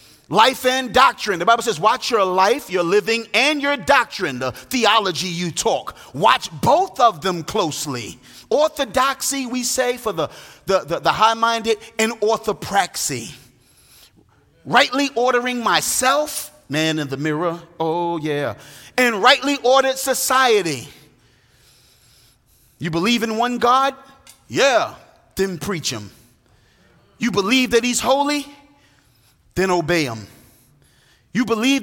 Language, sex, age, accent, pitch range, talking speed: English, male, 30-49, American, 155-250 Hz, 125 wpm